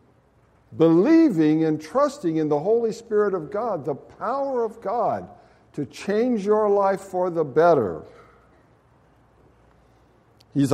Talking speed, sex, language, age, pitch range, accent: 115 wpm, male, English, 60-79, 165-255 Hz, American